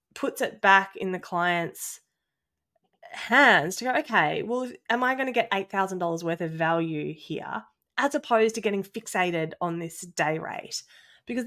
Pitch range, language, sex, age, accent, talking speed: 165-225 Hz, English, female, 20-39, Australian, 160 wpm